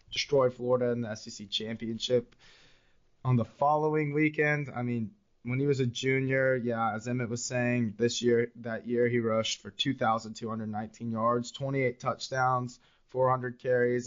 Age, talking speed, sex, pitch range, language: 20-39, 150 wpm, male, 110-125 Hz, English